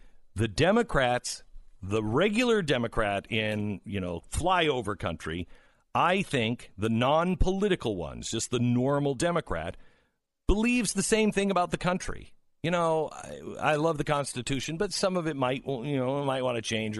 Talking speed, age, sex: 155 wpm, 50-69, male